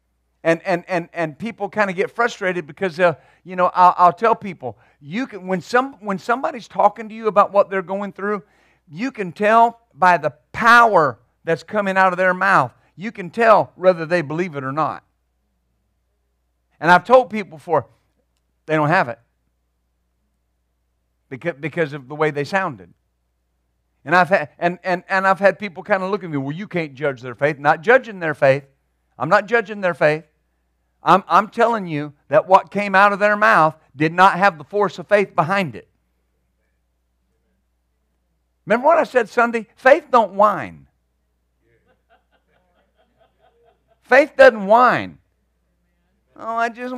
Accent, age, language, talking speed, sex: American, 50-69, English, 165 wpm, male